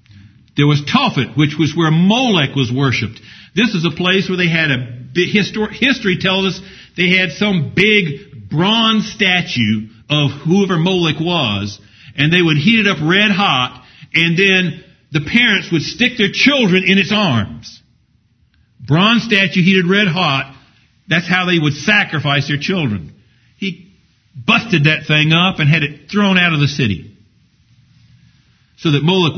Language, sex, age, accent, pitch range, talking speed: English, male, 50-69, American, 135-200 Hz, 155 wpm